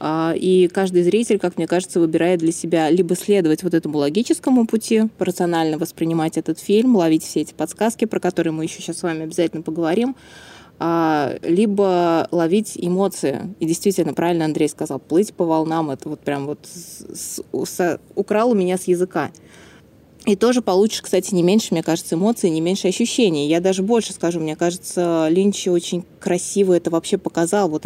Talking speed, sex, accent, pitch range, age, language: 165 wpm, female, native, 160-185 Hz, 20-39, Russian